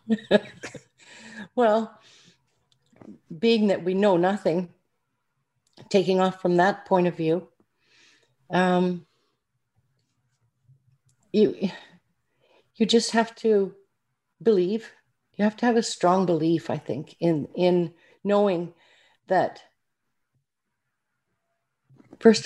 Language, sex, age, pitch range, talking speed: English, female, 50-69, 160-195 Hz, 90 wpm